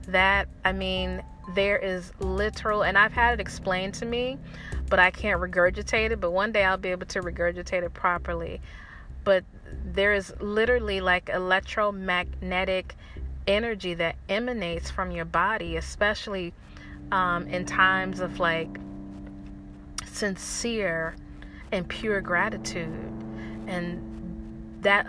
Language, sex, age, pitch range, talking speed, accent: English, female, 30-49, 170-195 Hz, 125 wpm, American